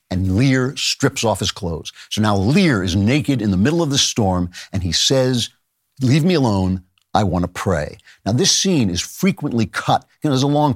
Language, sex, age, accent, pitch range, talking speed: English, male, 50-69, American, 105-150 Hz, 210 wpm